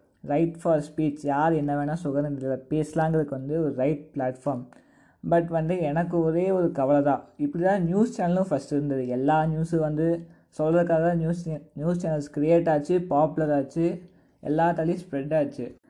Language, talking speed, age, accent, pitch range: Tamil, 145 wpm, 20-39, native, 140-165 Hz